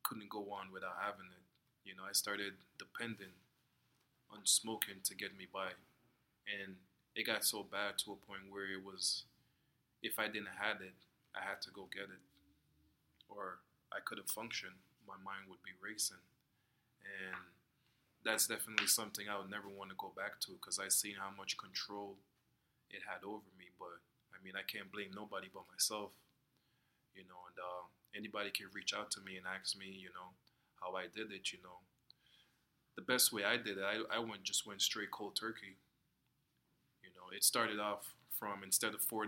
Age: 20-39